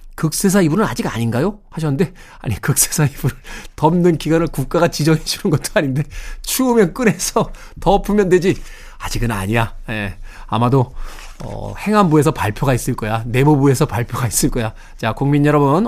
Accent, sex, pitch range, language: native, male, 125-160 Hz, Korean